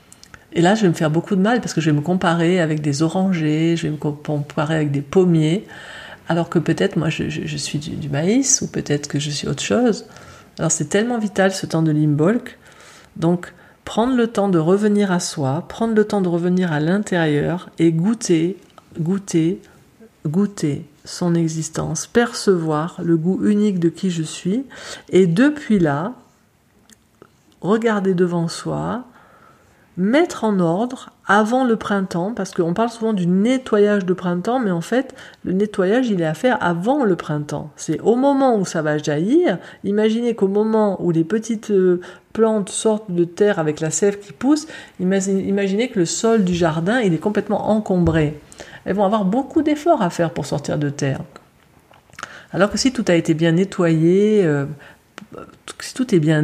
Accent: French